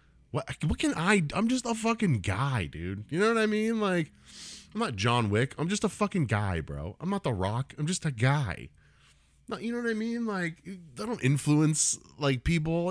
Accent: American